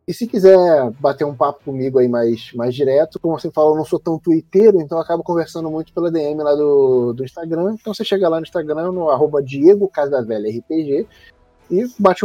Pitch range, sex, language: 130-175 Hz, male, Portuguese